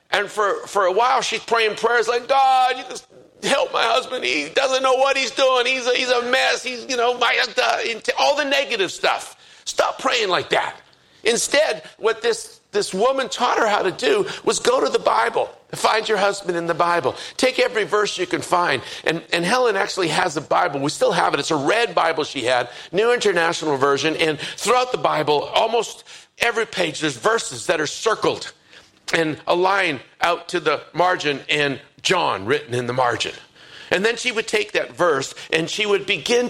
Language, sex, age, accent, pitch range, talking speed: English, male, 50-69, American, 180-270 Hz, 200 wpm